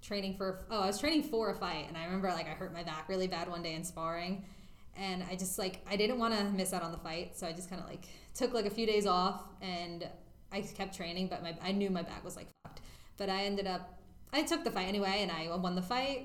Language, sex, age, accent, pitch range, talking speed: English, female, 20-39, American, 175-205 Hz, 275 wpm